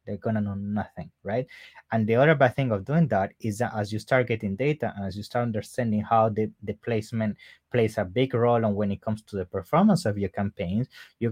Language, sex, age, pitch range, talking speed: English, male, 20-39, 105-125 Hz, 240 wpm